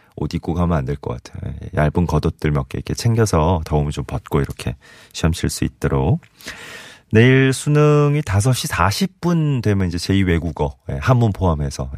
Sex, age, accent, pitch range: male, 30-49, native, 80-105 Hz